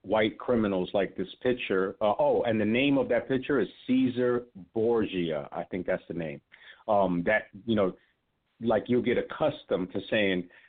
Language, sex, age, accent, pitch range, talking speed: English, male, 50-69, American, 105-130 Hz, 175 wpm